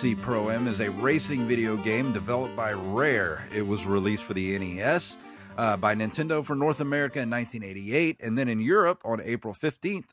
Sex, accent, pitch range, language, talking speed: male, American, 95-125 Hz, English, 185 wpm